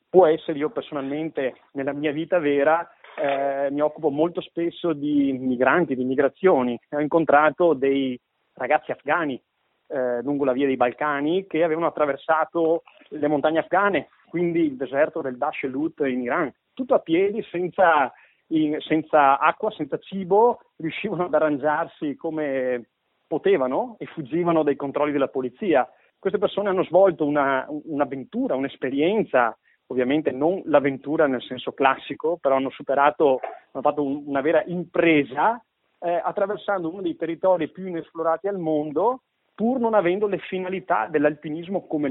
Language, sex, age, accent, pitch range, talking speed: Italian, male, 30-49, native, 140-180 Hz, 140 wpm